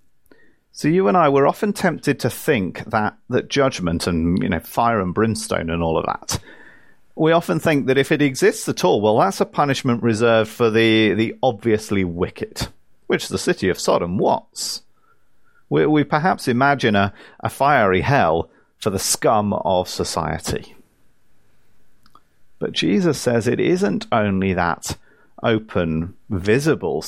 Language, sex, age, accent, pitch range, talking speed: English, male, 40-59, British, 105-140 Hz, 155 wpm